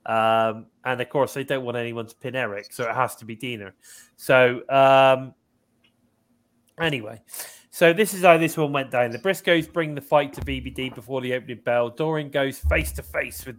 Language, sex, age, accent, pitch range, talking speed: English, male, 20-39, British, 125-150 Hz, 190 wpm